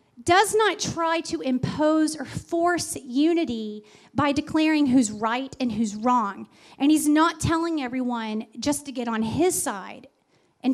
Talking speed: 150 wpm